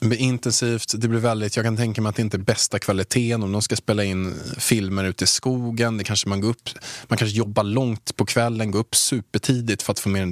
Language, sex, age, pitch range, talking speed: Swedish, male, 20-39, 95-120 Hz, 245 wpm